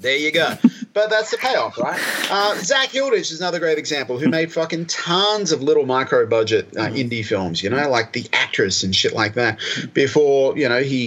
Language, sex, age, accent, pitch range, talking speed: English, male, 30-49, Australian, 115-170 Hz, 210 wpm